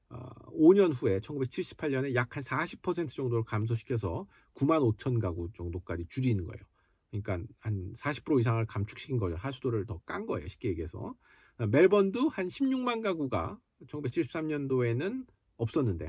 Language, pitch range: Korean, 105-145 Hz